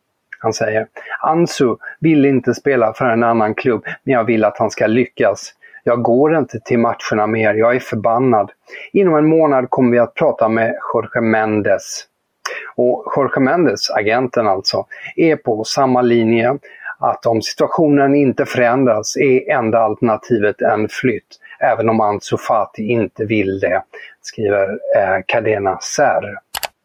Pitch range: 110-140 Hz